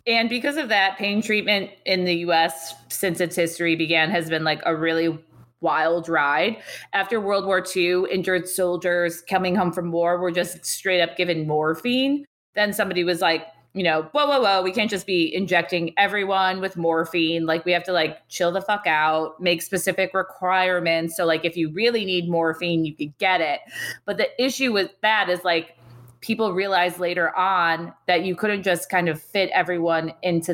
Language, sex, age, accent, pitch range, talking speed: English, female, 20-39, American, 165-195 Hz, 190 wpm